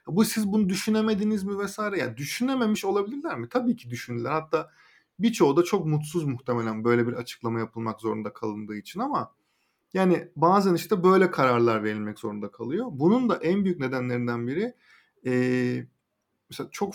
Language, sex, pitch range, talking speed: Turkish, male, 125-185 Hz, 150 wpm